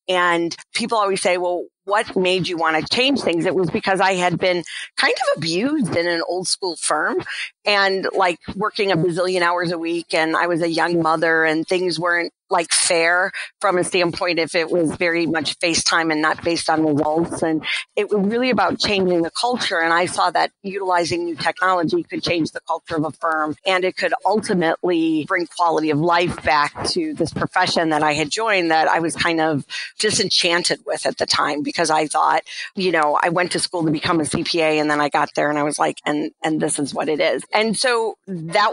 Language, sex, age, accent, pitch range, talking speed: English, female, 40-59, American, 165-195 Hz, 215 wpm